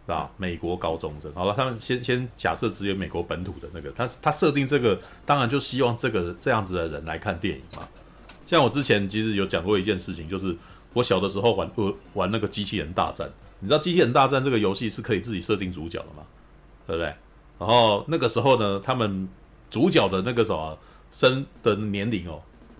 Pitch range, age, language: 95-140 Hz, 30-49, Chinese